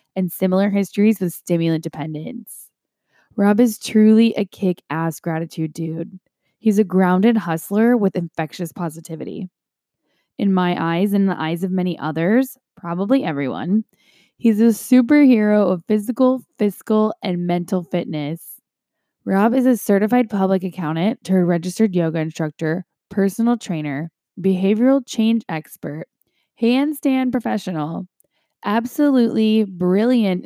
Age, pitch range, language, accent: 10-29, 170-220 Hz, English, American